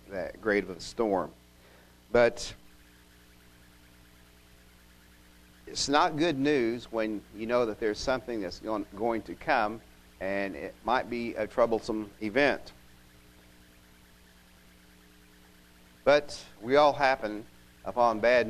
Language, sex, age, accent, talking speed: English, male, 50-69, American, 105 wpm